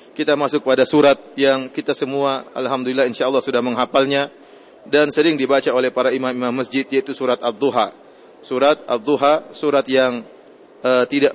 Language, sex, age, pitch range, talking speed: English, male, 30-49, 135-155 Hz, 150 wpm